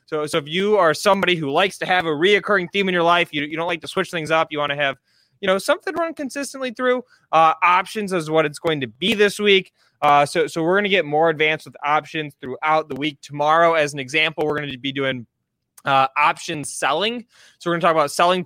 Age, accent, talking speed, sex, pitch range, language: 20-39, American, 250 wpm, male, 140-175 Hz, English